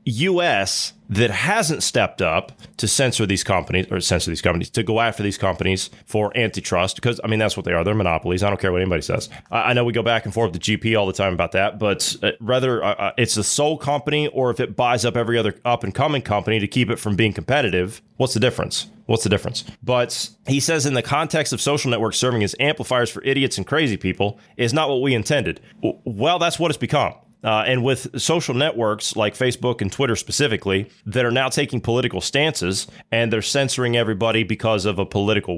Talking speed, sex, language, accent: 220 wpm, male, English, American